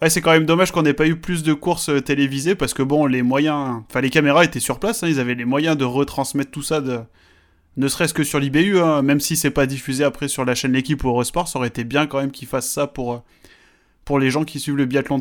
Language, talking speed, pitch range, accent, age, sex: French, 270 wpm, 130-155 Hz, French, 20-39, male